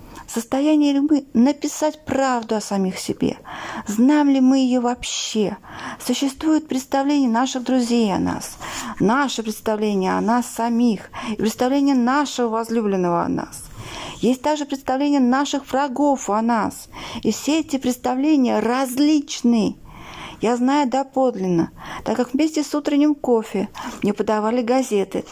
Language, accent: Russian, native